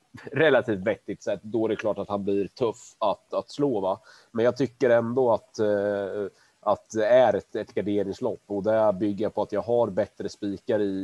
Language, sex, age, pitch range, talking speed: Swedish, male, 30-49, 95-105 Hz, 200 wpm